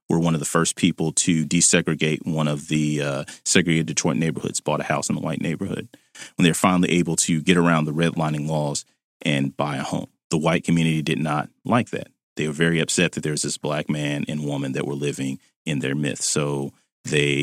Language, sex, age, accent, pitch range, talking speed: English, male, 30-49, American, 75-85 Hz, 220 wpm